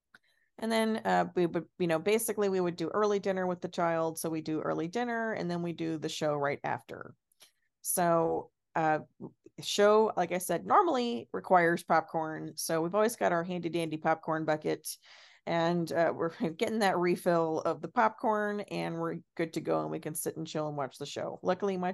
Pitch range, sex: 155-190 Hz, female